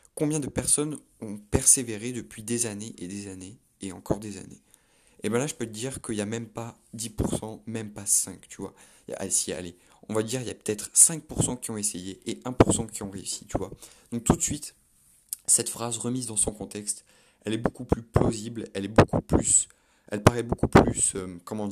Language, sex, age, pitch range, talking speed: French, male, 30-49, 100-120 Hz, 220 wpm